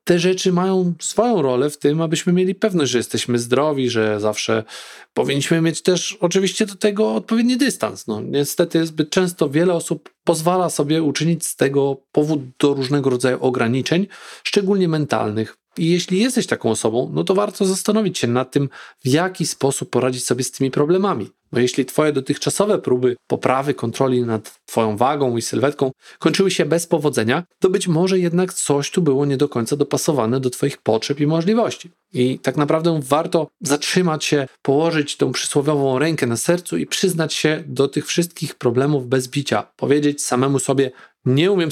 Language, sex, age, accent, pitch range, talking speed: Polish, male, 40-59, native, 135-180 Hz, 170 wpm